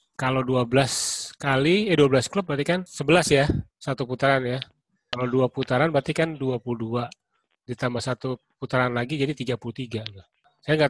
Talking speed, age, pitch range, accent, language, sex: 150 wpm, 30-49, 125-150 Hz, native, Indonesian, male